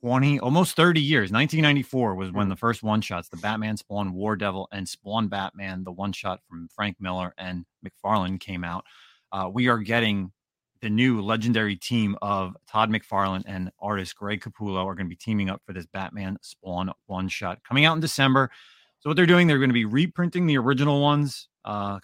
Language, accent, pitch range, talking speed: English, American, 95-120 Hz, 190 wpm